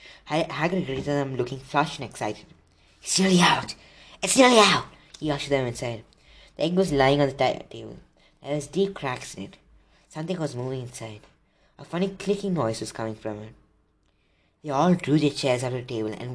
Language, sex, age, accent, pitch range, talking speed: English, female, 20-39, Indian, 120-180 Hz, 190 wpm